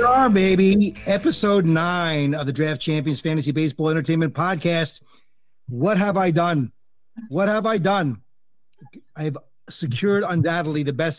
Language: English